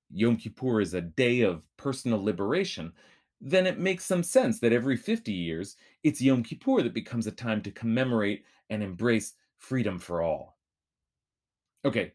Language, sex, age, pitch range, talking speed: English, male, 30-49, 95-135 Hz, 160 wpm